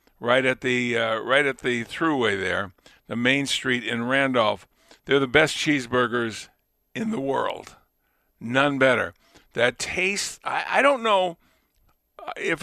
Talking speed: 145 wpm